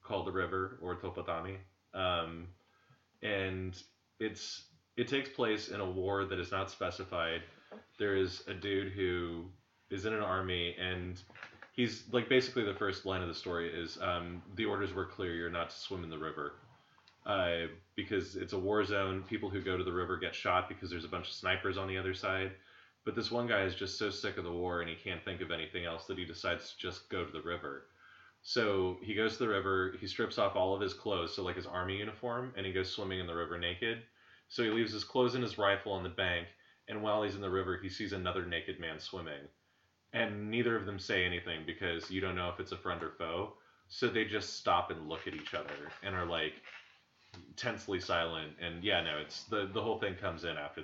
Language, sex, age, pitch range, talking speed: English, male, 20-39, 85-105 Hz, 225 wpm